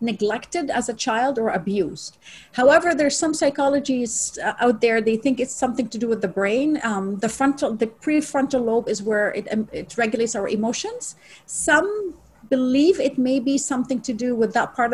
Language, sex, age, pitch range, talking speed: English, female, 40-59, 215-265 Hz, 180 wpm